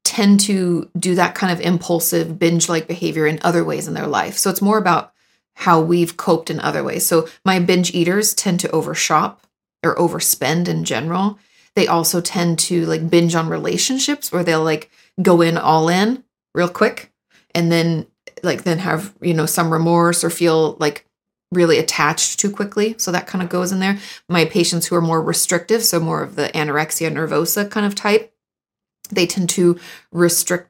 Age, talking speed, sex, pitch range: 30-49, 185 wpm, female, 165-200 Hz